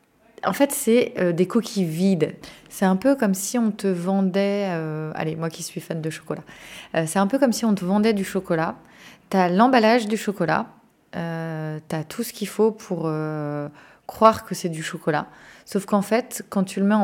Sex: female